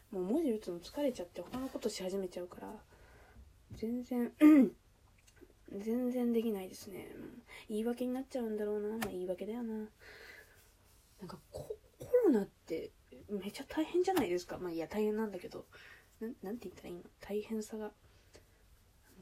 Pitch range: 175-240 Hz